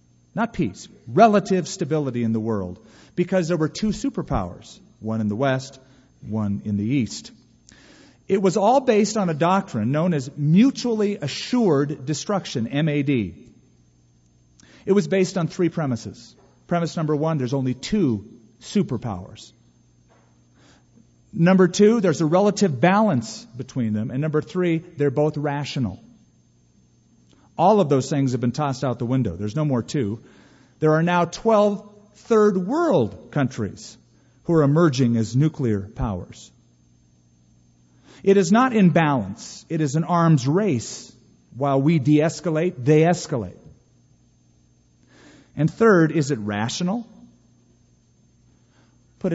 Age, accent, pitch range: 40-59, American, 110-180 Hz